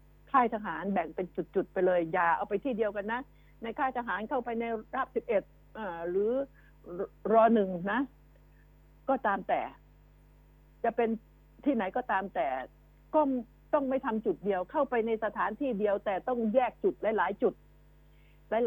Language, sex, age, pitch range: Thai, female, 60-79, 185-240 Hz